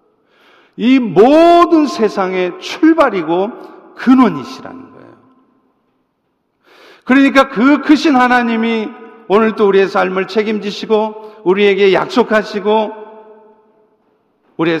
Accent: native